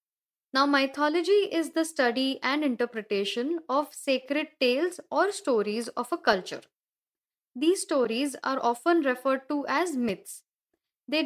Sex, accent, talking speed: female, native, 130 wpm